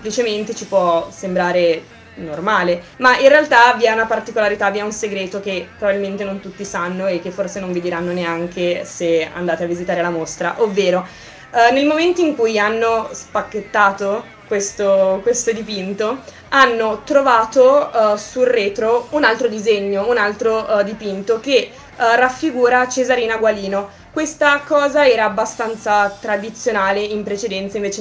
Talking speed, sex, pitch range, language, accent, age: 150 wpm, female, 200-245 Hz, Italian, native, 20-39